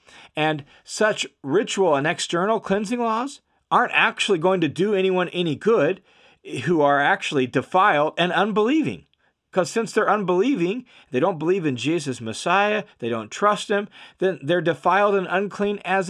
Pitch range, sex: 130-195 Hz, male